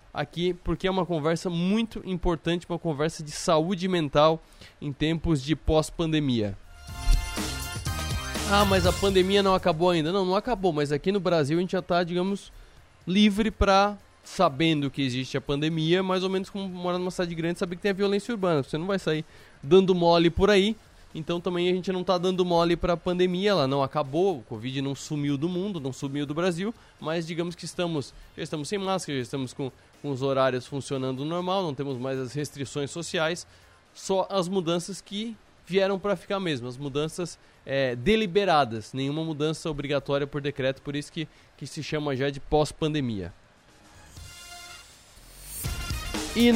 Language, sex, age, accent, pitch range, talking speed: Portuguese, male, 20-39, Brazilian, 140-185 Hz, 175 wpm